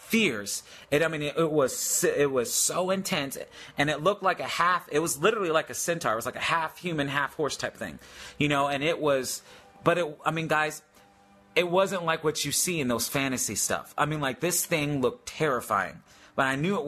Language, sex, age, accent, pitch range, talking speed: English, male, 30-49, American, 125-160 Hz, 210 wpm